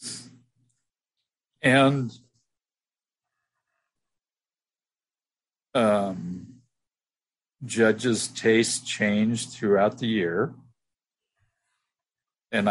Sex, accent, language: male, American, English